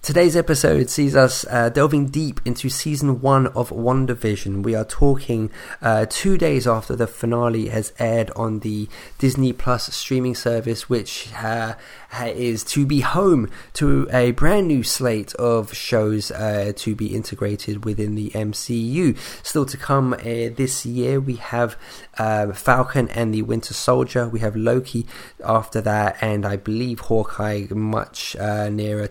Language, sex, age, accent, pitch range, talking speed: English, male, 20-39, British, 105-125 Hz, 155 wpm